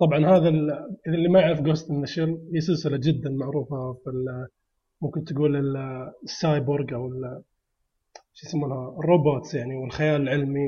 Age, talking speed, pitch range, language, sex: 20-39, 130 wpm, 135-160 Hz, Arabic, male